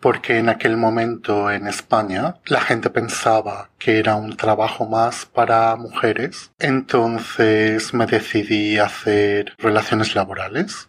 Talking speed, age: 125 wpm, 30-49